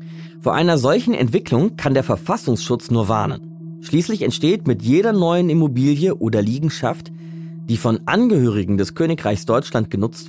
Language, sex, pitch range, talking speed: German, male, 115-165 Hz, 140 wpm